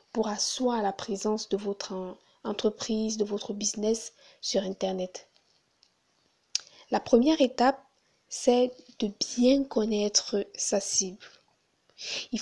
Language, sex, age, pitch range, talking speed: French, female, 20-39, 210-250 Hz, 105 wpm